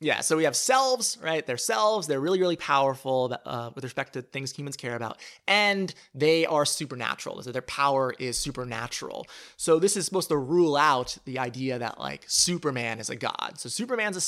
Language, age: English, 30-49